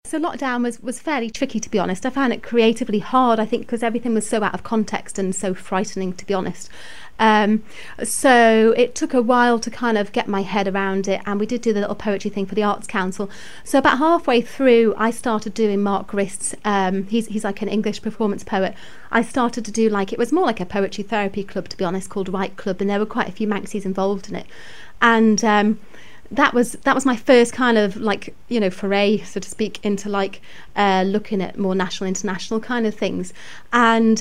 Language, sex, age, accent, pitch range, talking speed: English, female, 30-49, British, 200-235 Hz, 230 wpm